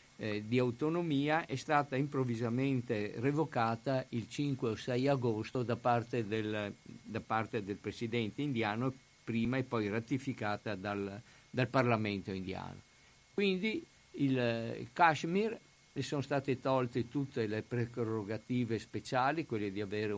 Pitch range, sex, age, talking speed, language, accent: 110-130 Hz, male, 50-69, 120 wpm, Italian, native